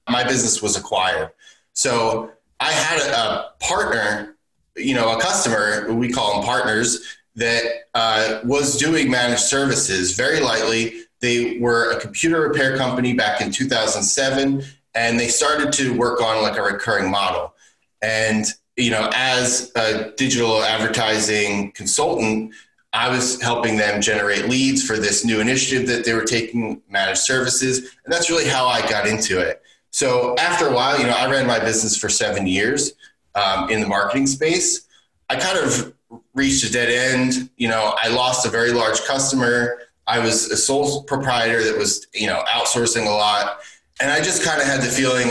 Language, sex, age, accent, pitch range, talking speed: English, male, 20-39, American, 110-130 Hz, 170 wpm